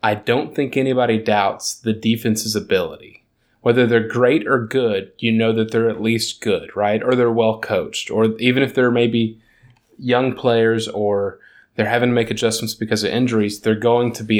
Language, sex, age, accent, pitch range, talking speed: English, male, 20-39, American, 110-120 Hz, 185 wpm